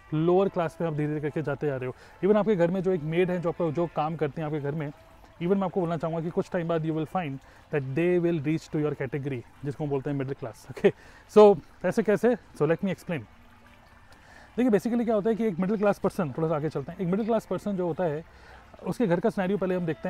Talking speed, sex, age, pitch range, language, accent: 270 wpm, male, 30-49, 155-185 Hz, Hindi, native